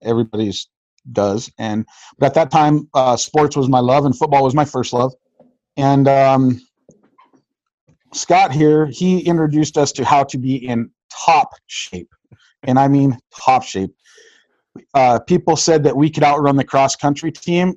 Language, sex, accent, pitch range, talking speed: English, male, American, 125-150 Hz, 160 wpm